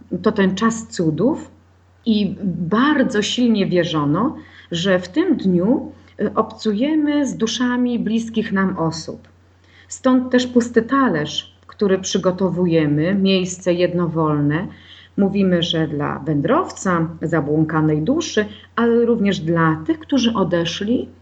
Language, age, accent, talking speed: Polish, 40-59, native, 105 wpm